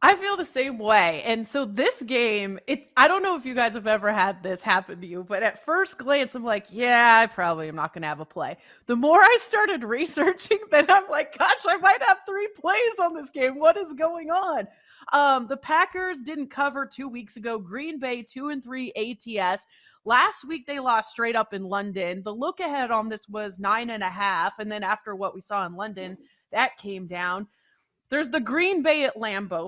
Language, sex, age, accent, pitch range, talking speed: English, female, 30-49, American, 205-290 Hz, 220 wpm